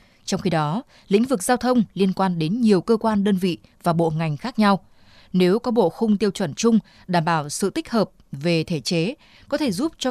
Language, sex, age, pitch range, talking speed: Vietnamese, female, 20-39, 170-225 Hz, 230 wpm